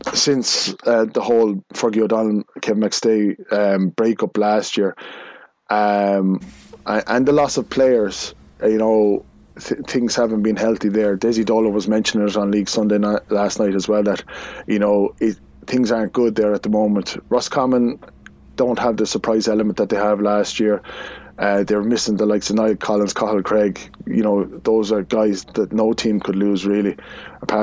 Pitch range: 105-120 Hz